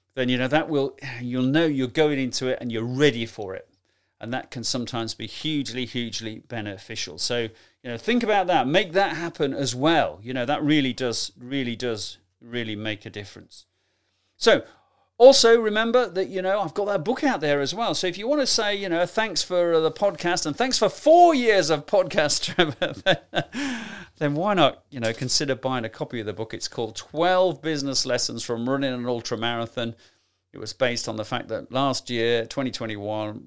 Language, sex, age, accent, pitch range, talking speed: English, male, 40-59, British, 115-160 Hz, 200 wpm